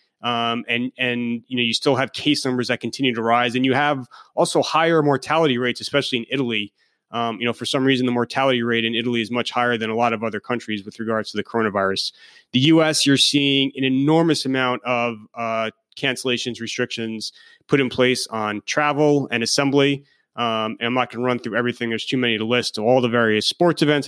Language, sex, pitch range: English, male, 115-135 Hz